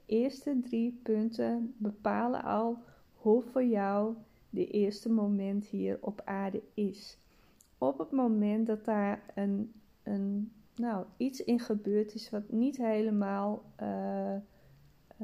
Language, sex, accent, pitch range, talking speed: Dutch, female, Dutch, 200-245 Hz, 120 wpm